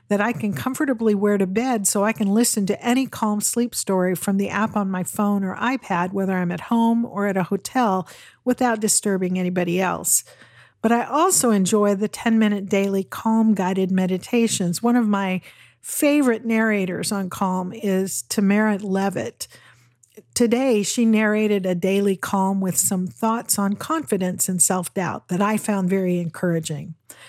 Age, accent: 50-69, American